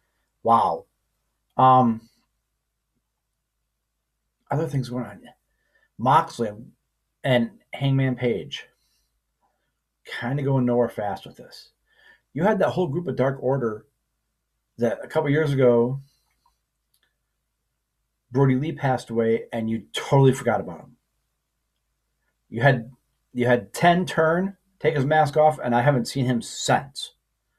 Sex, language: male, English